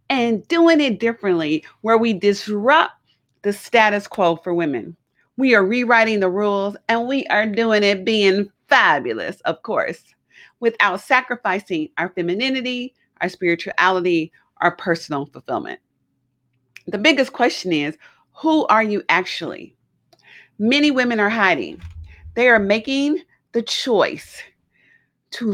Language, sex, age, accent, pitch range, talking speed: English, female, 40-59, American, 160-230 Hz, 125 wpm